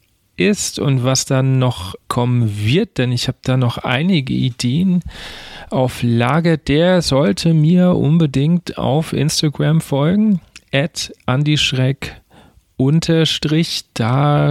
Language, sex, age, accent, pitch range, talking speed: German, male, 40-59, German, 115-145 Hz, 110 wpm